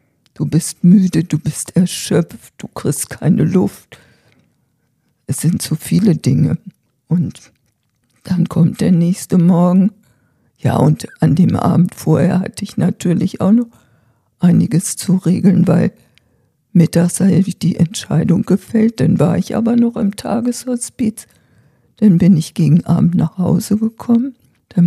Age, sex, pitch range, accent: 50-69, female, 155-200 Hz, German